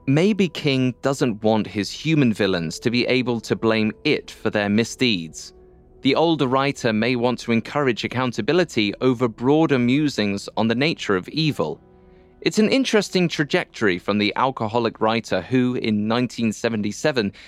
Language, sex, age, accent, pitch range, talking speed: English, male, 30-49, British, 110-155 Hz, 150 wpm